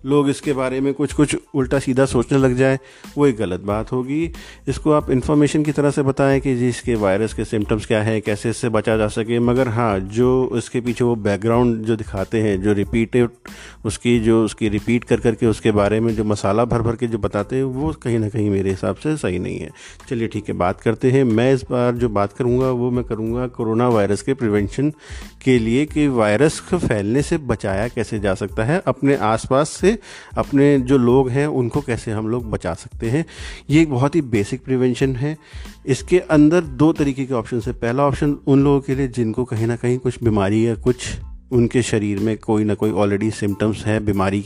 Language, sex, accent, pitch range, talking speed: Hindi, male, native, 105-135 Hz, 210 wpm